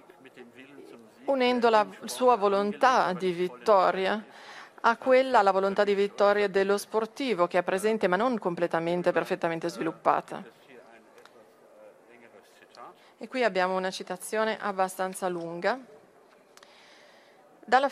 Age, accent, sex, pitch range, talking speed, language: 40-59, native, female, 175-215 Hz, 100 wpm, Italian